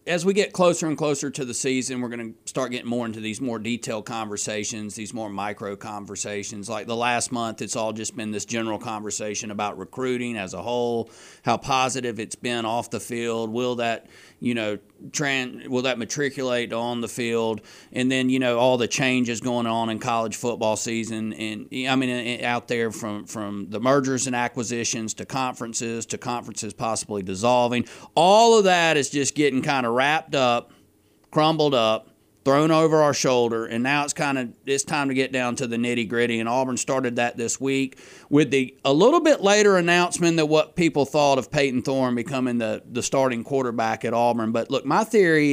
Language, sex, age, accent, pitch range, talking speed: English, male, 40-59, American, 115-145 Hz, 195 wpm